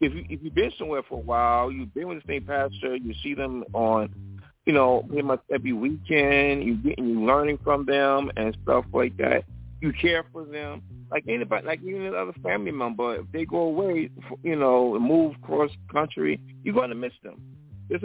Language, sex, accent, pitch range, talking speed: English, male, American, 110-145 Hz, 205 wpm